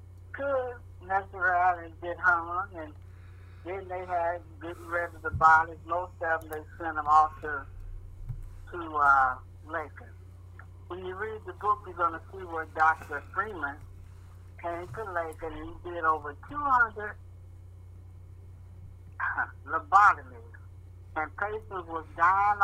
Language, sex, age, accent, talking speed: English, male, 60-79, American, 135 wpm